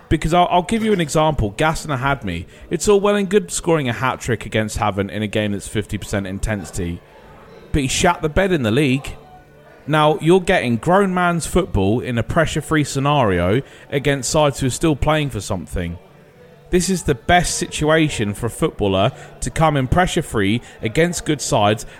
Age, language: 30-49, English